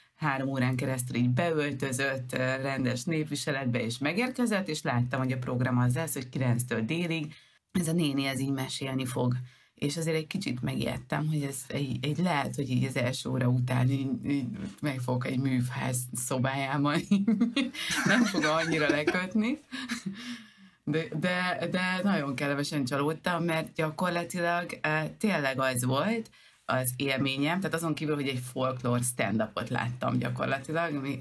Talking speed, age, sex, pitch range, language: 150 wpm, 30-49, female, 130-175 Hz, Hungarian